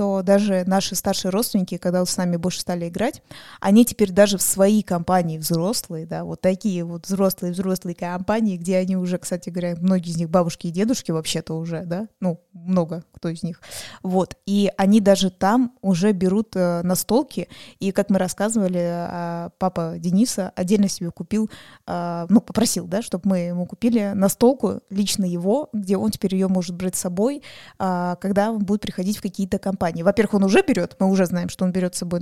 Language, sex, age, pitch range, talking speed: Russian, female, 20-39, 180-205 Hz, 190 wpm